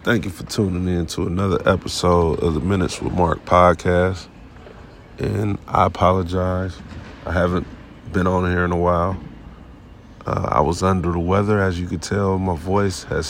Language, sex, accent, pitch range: English, male, American, 85-100 Hz